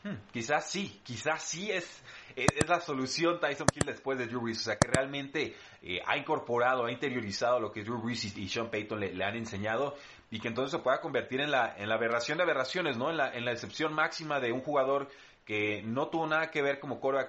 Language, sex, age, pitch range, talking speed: Spanish, male, 30-49, 110-140 Hz, 235 wpm